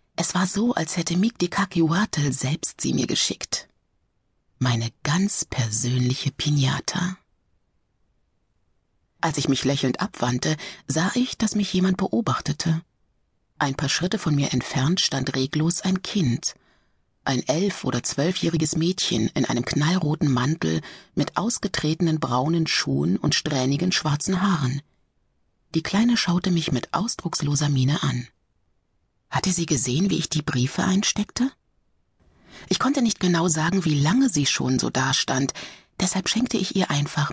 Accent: German